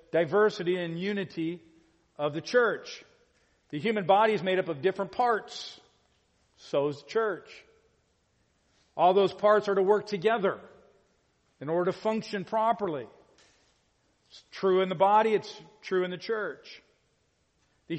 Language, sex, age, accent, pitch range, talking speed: English, male, 50-69, American, 155-205 Hz, 140 wpm